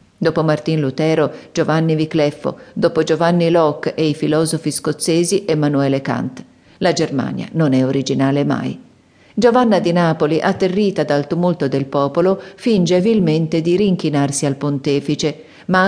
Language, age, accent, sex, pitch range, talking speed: Italian, 40-59, native, female, 145-180 Hz, 130 wpm